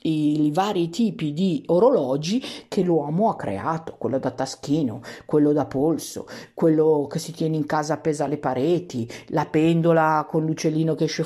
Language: Italian